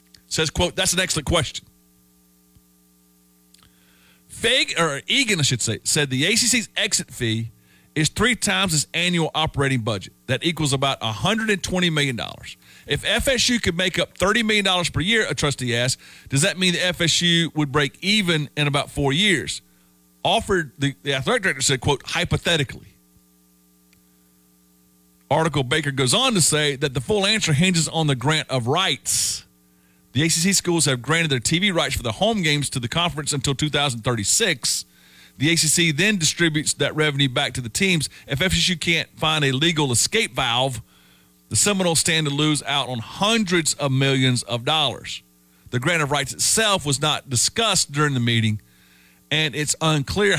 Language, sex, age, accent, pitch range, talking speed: English, male, 40-59, American, 115-170 Hz, 165 wpm